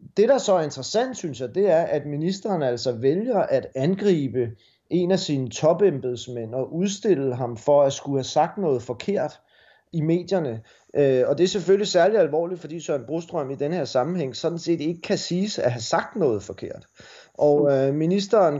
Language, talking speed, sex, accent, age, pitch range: Danish, 180 wpm, male, native, 30-49, 125-160 Hz